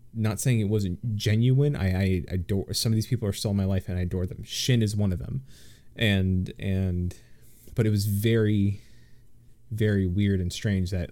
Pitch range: 95-115 Hz